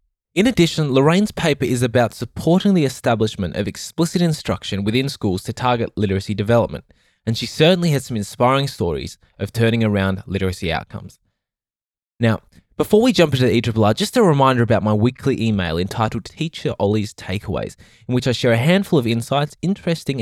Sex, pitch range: male, 105-145 Hz